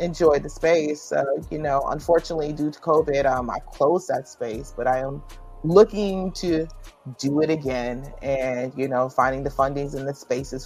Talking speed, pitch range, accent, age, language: 180 wpm, 130-150 Hz, American, 30-49, English